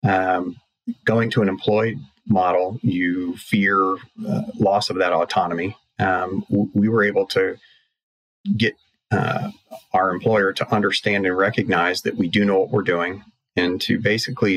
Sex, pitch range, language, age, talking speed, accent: male, 90-110 Hz, English, 30-49, 150 wpm, American